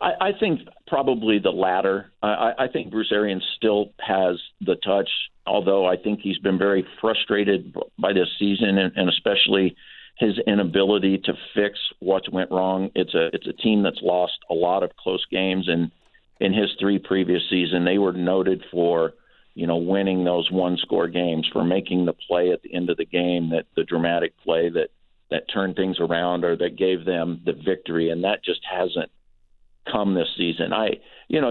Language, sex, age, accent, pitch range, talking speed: English, male, 50-69, American, 90-105 Hz, 185 wpm